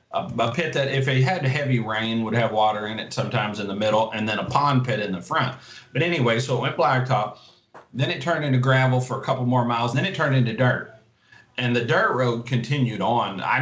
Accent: American